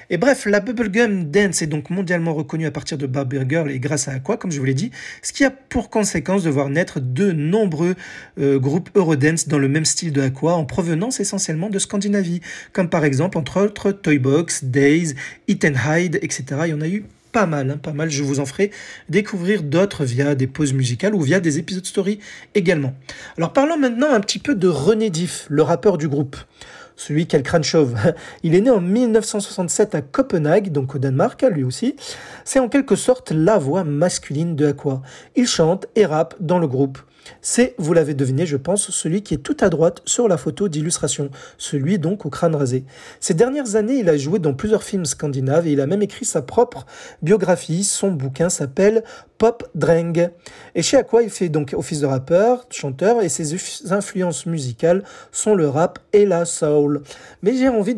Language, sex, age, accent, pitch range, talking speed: French, male, 40-59, French, 150-205 Hz, 205 wpm